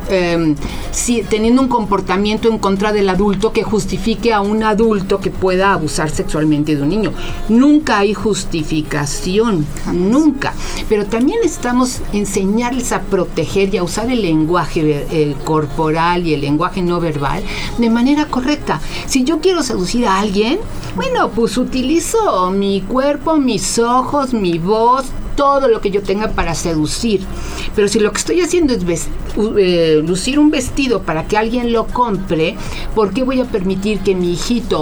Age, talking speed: 40-59, 155 wpm